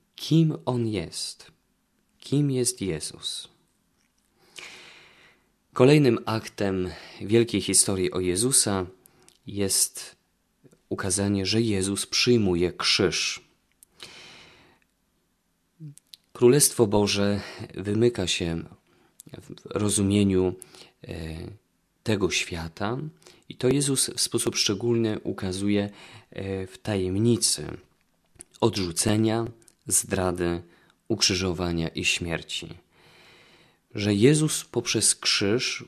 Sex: male